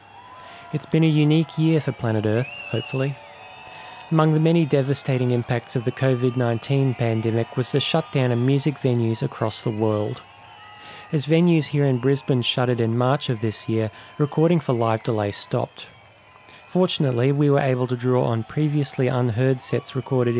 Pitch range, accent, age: 115-140 Hz, Australian, 30-49